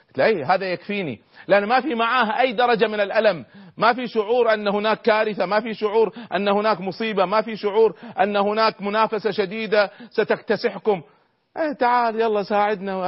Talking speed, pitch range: 165 wpm, 170-220 Hz